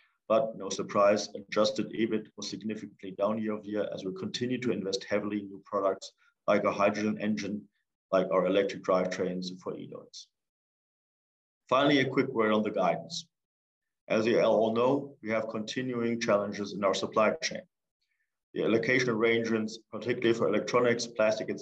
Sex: male